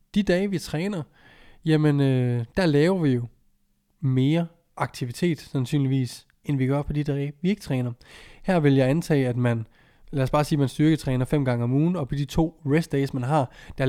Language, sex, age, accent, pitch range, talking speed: Danish, male, 20-39, native, 125-155 Hz, 205 wpm